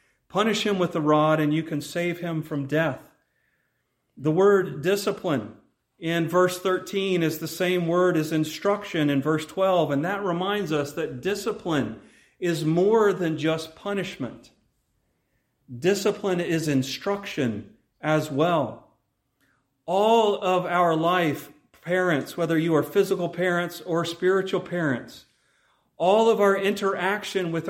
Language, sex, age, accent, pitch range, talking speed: English, male, 40-59, American, 150-190 Hz, 130 wpm